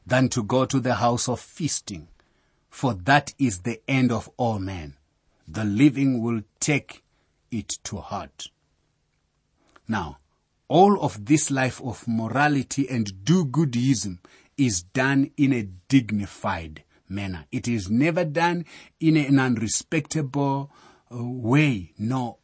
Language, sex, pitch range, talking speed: English, male, 105-140 Hz, 130 wpm